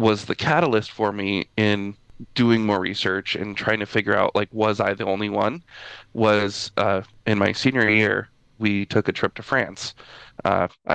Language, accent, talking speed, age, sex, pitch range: English, American, 180 wpm, 20-39, male, 105-115 Hz